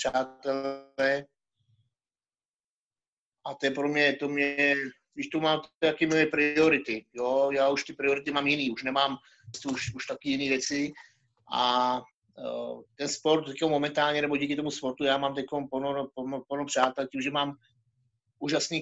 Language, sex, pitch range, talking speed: Czech, male, 125-140 Hz, 135 wpm